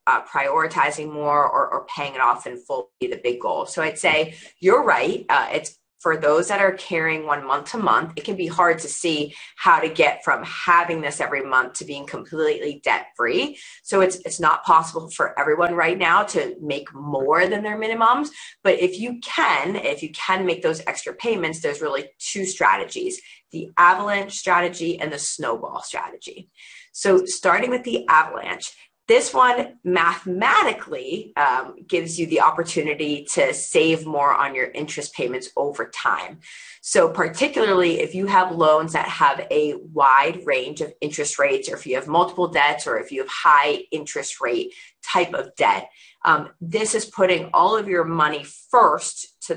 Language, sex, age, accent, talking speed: English, female, 30-49, American, 180 wpm